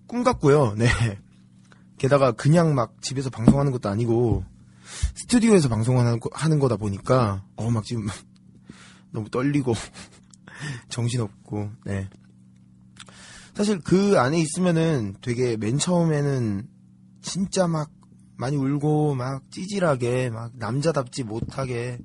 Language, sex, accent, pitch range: Korean, male, native, 105-150 Hz